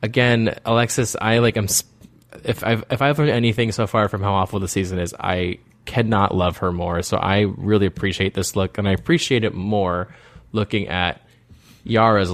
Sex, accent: male, American